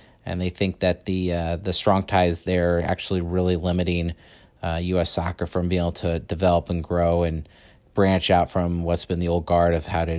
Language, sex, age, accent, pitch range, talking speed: English, male, 30-49, American, 90-105 Hz, 210 wpm